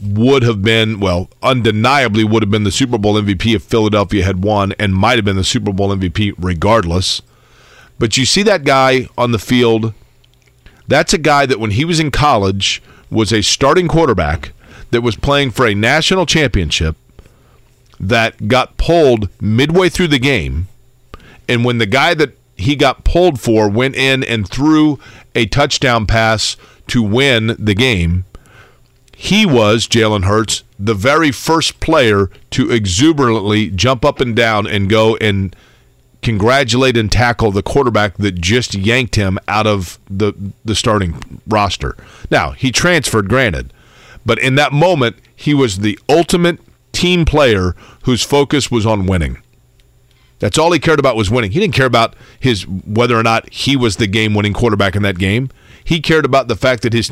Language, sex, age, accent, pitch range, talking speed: English, male, 40-59, American, 105-130 Hz, 170 wpm